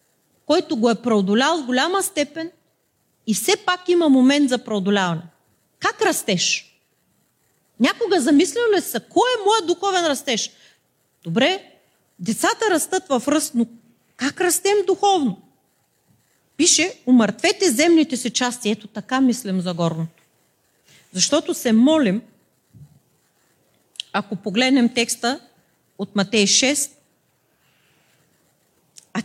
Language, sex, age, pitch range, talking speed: Bulgarian, female, 40-59, 205-300 Hz, 110 wpm